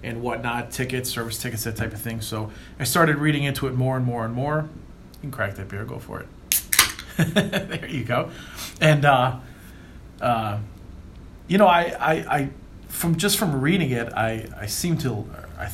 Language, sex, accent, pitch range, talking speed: English, male, American, 110-145 Hz, 190 wpm